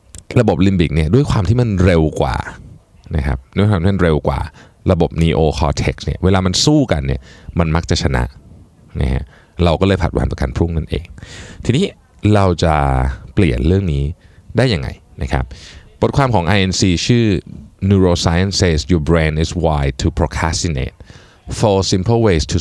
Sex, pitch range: male, 80-100 Hz